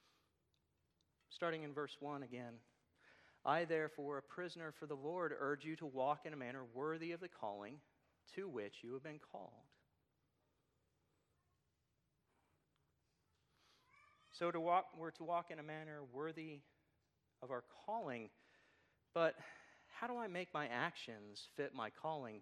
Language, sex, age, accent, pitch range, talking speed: English, male, 40-59, American, 110-155 Hz, 140 wpm